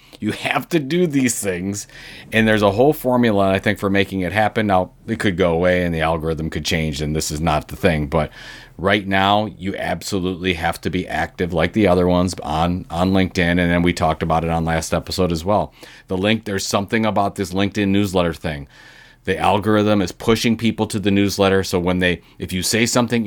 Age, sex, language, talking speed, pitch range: 40-59, male, English, 215 wpm, 90-110 Hz